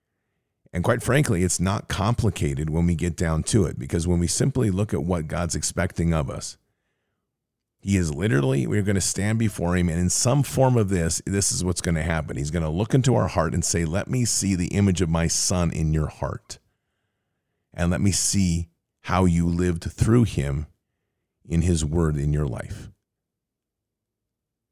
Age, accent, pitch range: 40-59, American, 80-105 Hz